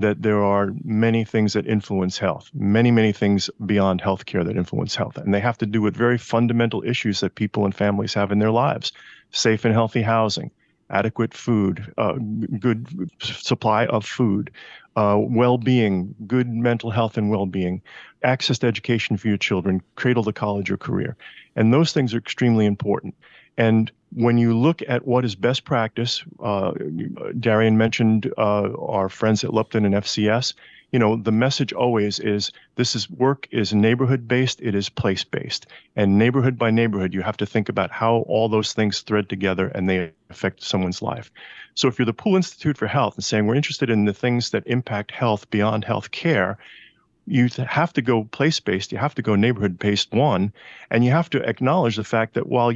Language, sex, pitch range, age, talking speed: English, male, 105-120 Hz, 40-59, 185 wpm